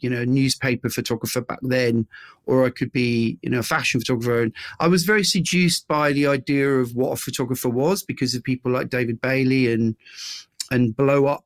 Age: 40-59